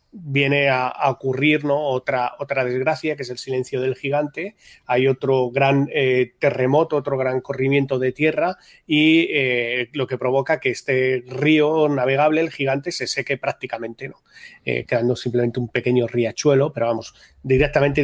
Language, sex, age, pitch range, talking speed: Spanish, male, 30-49, 125-145 Hz, 155 wpm